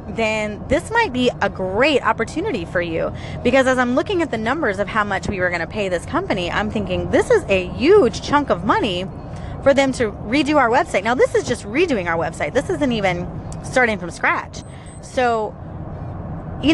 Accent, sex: American, female